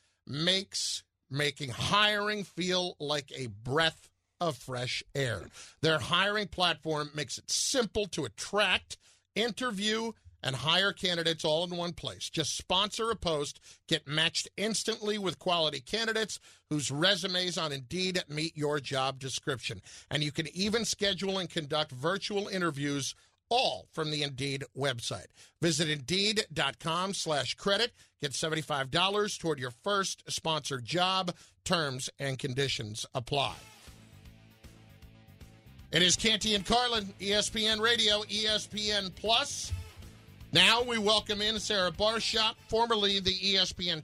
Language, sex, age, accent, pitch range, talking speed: English, male, 50-69, American, 140-200 Hz, 125 wpm